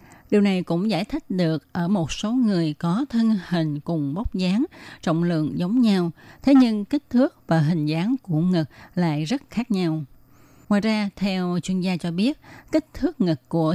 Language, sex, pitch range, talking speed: Vietnamese, female, 160-215 Hz, 190 wpm